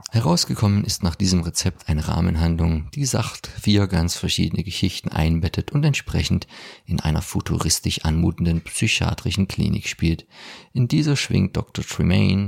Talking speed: 135 wpm